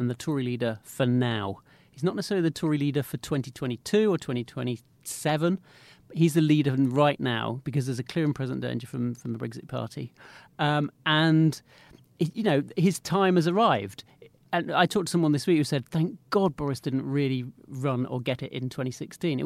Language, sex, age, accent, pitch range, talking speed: English, male, 40-59, British, 130-165 Hz, 200 wpm